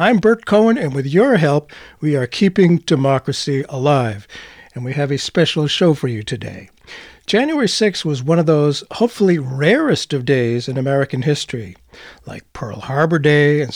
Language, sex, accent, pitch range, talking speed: English, male, American, 140-200 Hz, 170 wpm